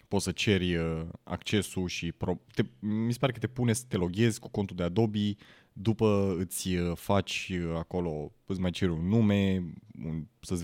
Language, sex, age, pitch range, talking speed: Romanian, male, 20-39, 85-105 Hz, 165 wpm